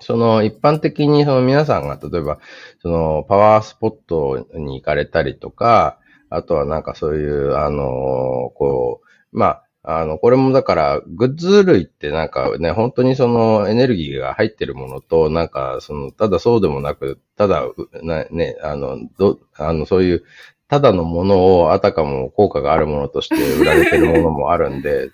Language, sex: Japanese, male